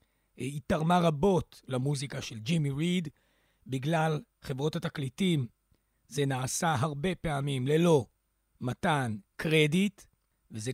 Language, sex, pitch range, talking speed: Hebrew, male, 135-200 Hz, 100 wpm